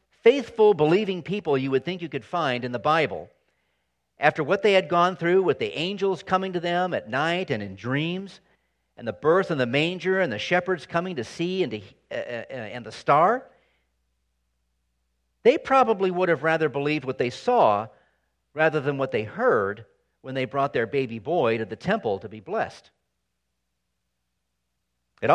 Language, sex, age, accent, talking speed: English, male, 50-69, American, 180 wpm